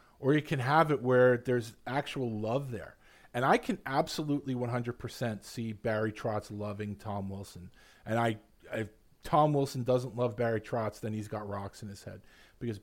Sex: male